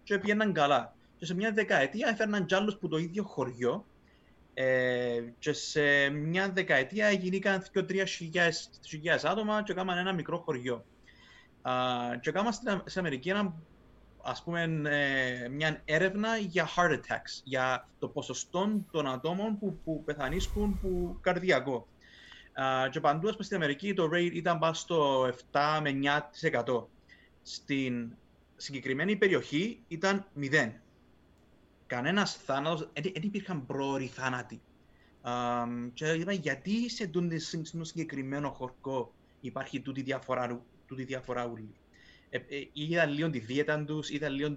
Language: Greek